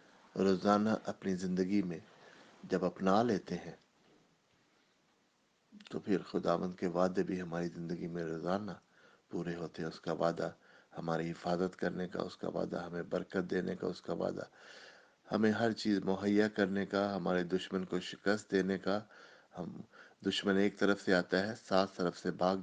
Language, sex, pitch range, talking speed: English, male, 85-100 Hz, 160 wpm